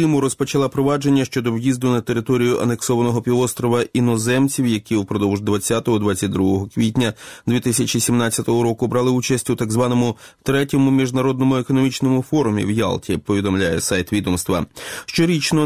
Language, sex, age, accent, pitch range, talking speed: Ukrainian, male, 30-49, native, 105-130 Hz, 120 wpm